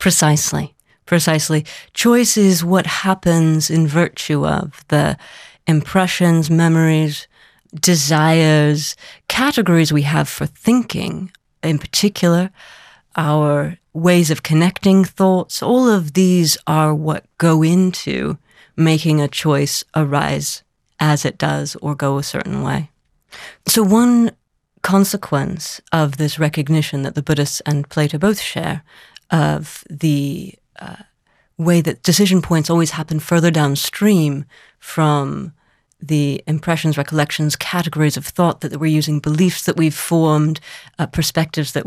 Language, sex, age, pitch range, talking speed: English, female, 30-49, 150-180 Hz, 120 wpm